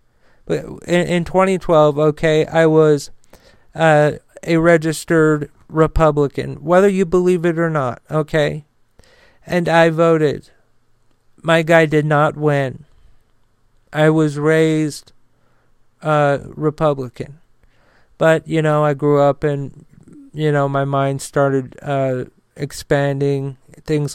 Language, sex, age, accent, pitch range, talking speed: English, male, 40-59, American, 140-155 Hz, 110 wpm